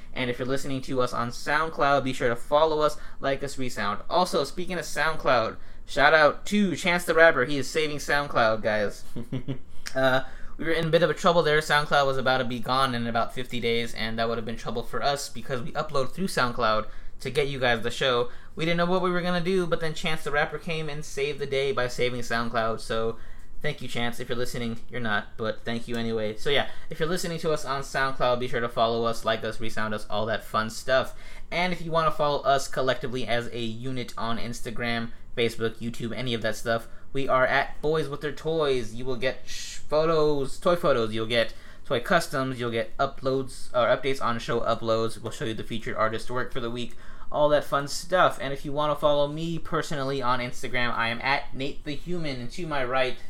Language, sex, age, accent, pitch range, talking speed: English, male, 20-39, American, 115-150 Hz, 230 wpm